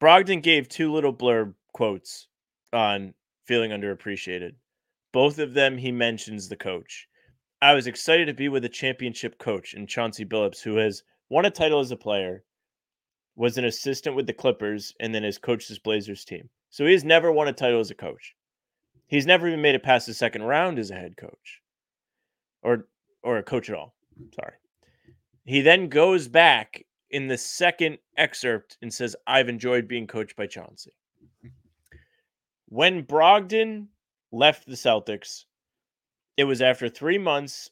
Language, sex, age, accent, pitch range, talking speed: English, male, 30-49, American, 115-160 Hz, 165 wpm